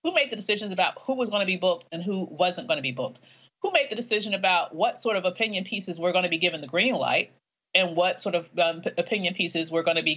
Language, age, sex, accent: English, 40-59, female, American